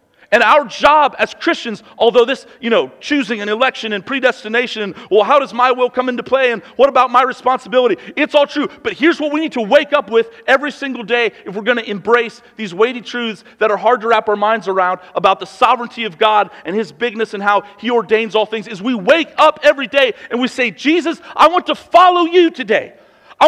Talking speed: 230 wpm